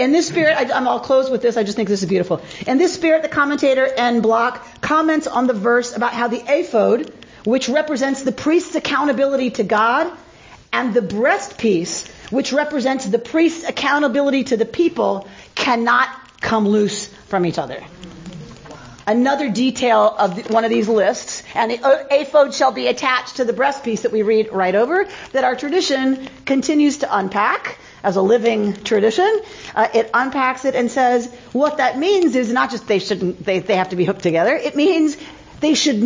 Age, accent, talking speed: 40-59, American, 185 wpm